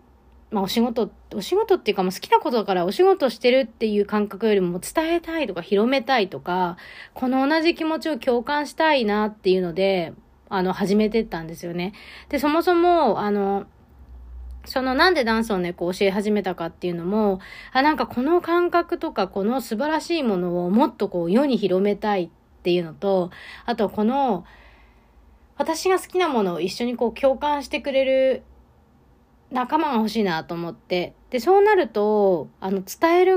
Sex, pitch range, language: female, 185-275 Hz, Japanese